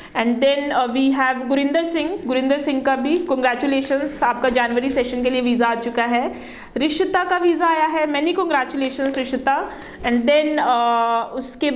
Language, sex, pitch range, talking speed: Punjabi, female, 250-300 Hz, 170 wpm